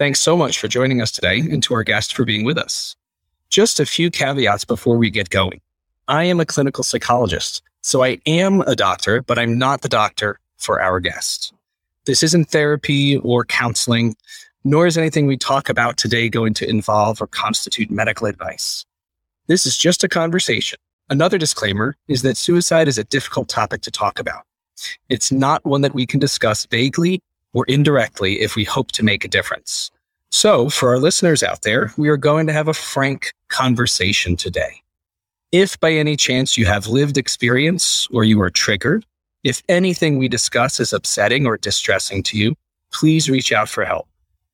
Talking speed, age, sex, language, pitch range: 185 wpm, 30-49, male, English, 115-155 Hz